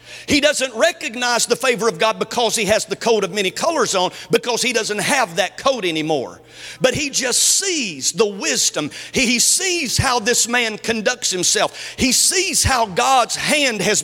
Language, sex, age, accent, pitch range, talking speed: English, male, 50-69, American, 205-265 Hz, 185 wpm